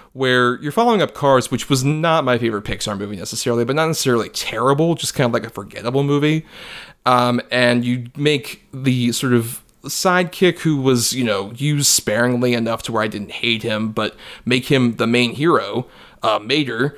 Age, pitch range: 30-49, 115-140 Hz